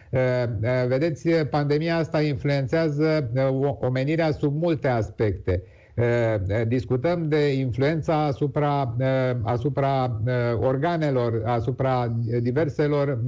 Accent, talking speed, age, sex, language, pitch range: native, 70 wpm, 50-69, male, Romanian, 125-150 Hz